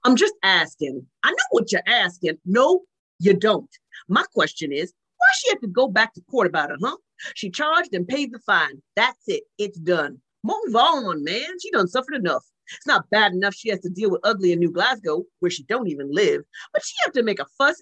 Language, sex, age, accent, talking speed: English, female, 40-59, American, 225 wpm